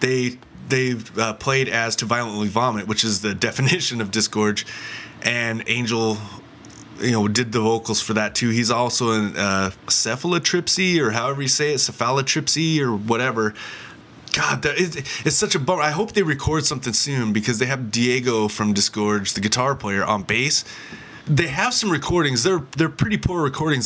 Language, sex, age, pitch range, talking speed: English, male, 20-39, 115-155 Hz, 175 wpm